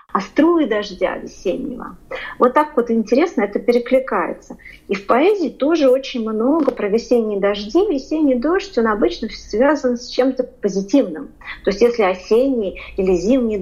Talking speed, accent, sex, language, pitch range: 145 wpm, native, female, Russian, 205-270 Hz